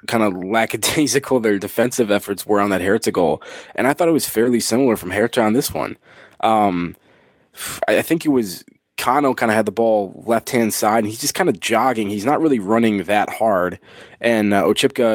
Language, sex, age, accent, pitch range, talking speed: English, male, 20-39, American, 100-125 Hz, 200 wpm